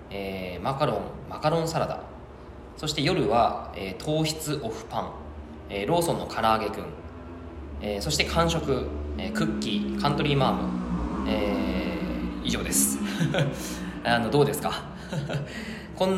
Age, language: 20-39, Japanese